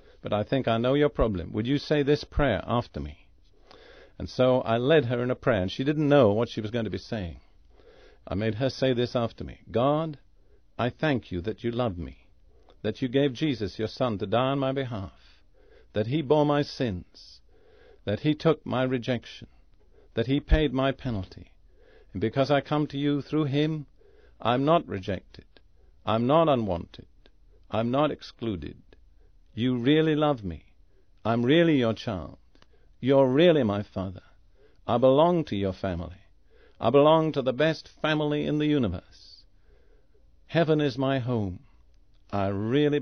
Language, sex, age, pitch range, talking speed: English, male, 50-69, 100-140 Hz, 170 wpm